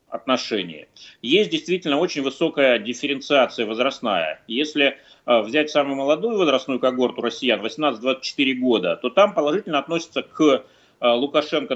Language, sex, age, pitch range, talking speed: Russian, male, 30-49, 130-195 Hz, 105 wpm